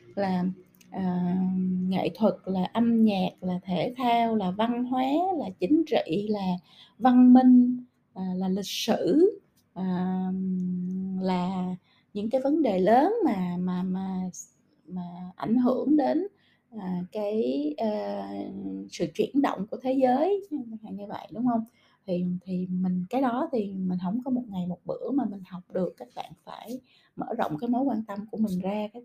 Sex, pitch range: female, 185-245 Hz